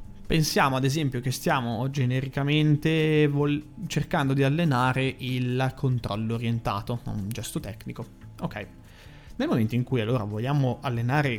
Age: 20-39